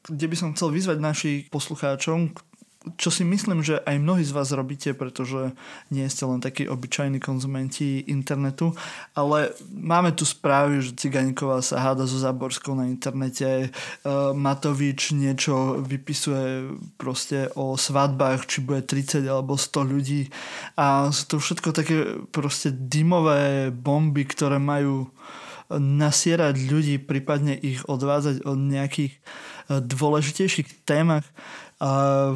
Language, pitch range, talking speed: Slovak, 135-155 Hz, 125 wpm